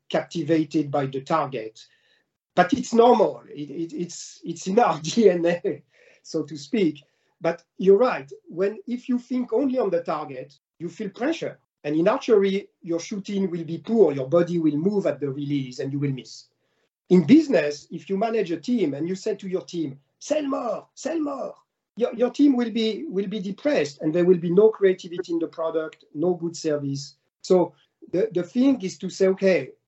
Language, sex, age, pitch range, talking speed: French, male, 50-69, 150-195 Hz, 190 wpm